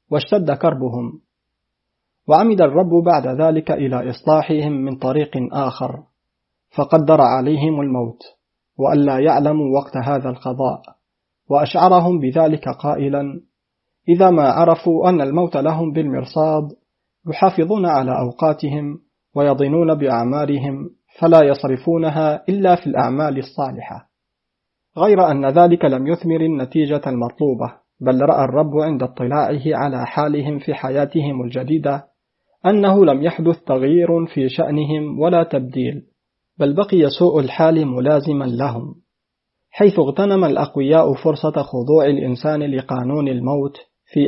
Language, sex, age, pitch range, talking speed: Arabic, male, 40-59, 135-160 Hz, 110 wpm